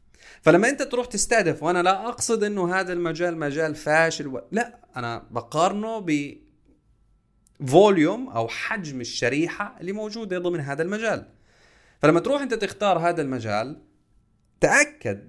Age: 30-49